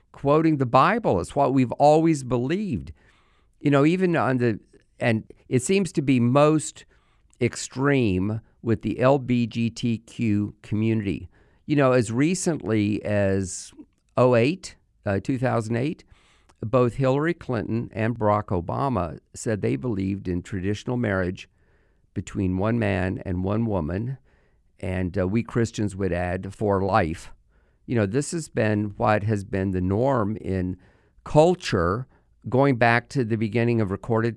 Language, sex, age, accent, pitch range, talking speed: English, male, 50-69, American, 100-130 Hz, 125 wpm